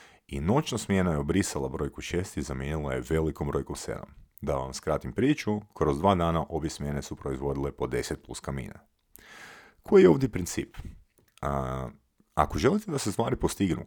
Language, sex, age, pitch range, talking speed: Croatian, male, 40-59, 70-100 Hz, 170 wpm